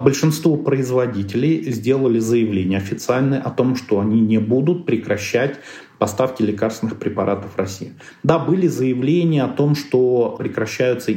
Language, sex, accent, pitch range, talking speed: Russian, male, native, 115-145 Hz, 130 wpm